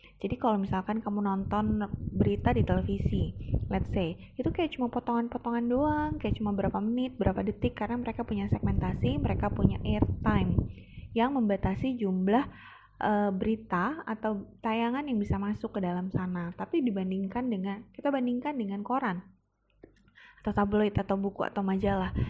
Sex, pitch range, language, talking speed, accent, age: female, 190-235 Hz, English, 150 wpm, Indonesian, 20-39